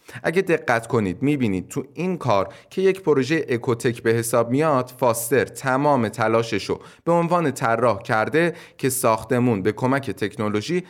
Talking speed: 145 wpm